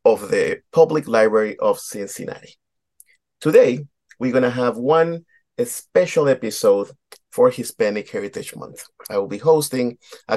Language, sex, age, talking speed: English, male, 30-49, 135 wpm